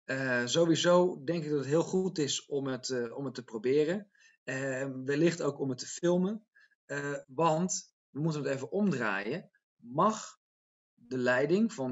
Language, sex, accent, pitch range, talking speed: Dutch, male, Dutch, 125-165 Hz, 160 wpm